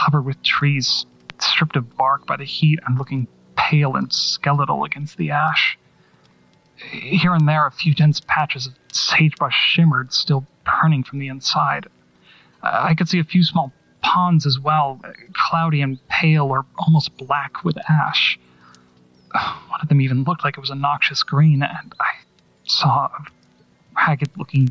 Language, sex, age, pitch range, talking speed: English, male, 30-49, 135-160 Hz, 160 wpm